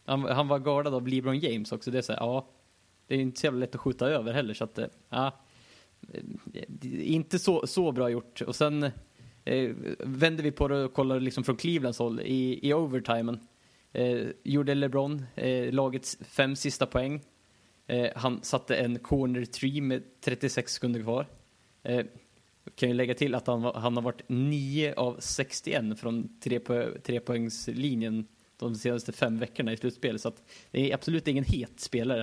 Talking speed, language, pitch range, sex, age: 180 wpm, Swedish, 120-140 Hz, male, 20-39